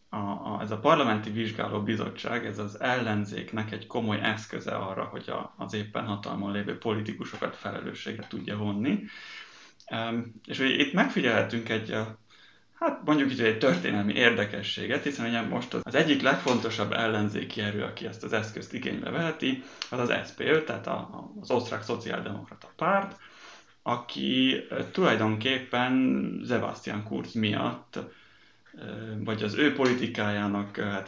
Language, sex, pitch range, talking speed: Hungarian, male, 105-120 Hz, 135 wpm